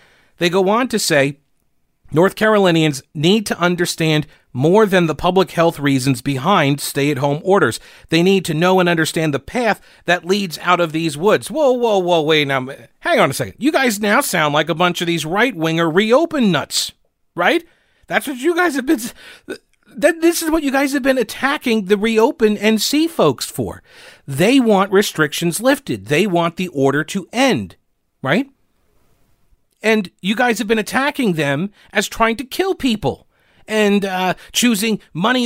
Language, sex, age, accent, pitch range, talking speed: English, male, 40-59, American, 155-230 Hz, 175 wpm